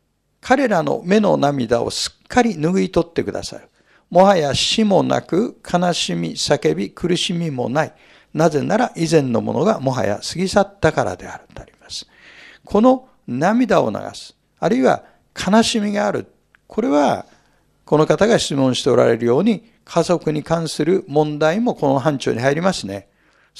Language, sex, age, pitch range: Japanese, male, 60-79, 160-235 Hz